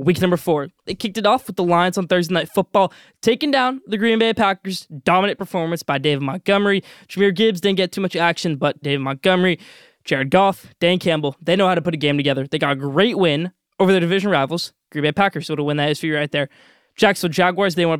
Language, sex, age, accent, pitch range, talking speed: English, male, 20-39, American, 160-200 Hz, 240 wpm